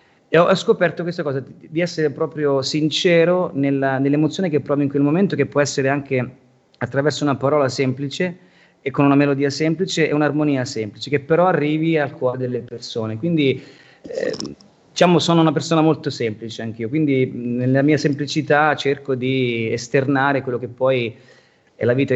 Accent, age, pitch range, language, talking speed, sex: native, 30-49, 115-145 Hz, Italian, 165 wpm, male